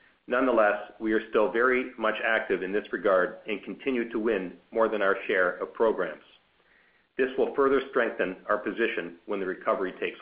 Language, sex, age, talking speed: English, male, 50-69, 175 wpm